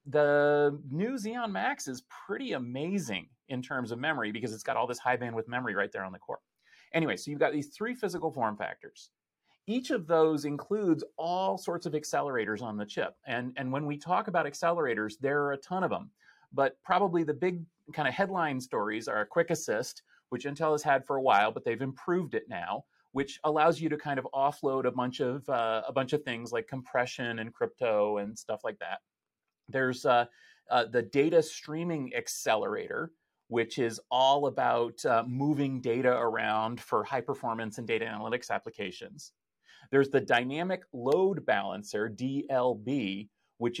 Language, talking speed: English, 180 wpm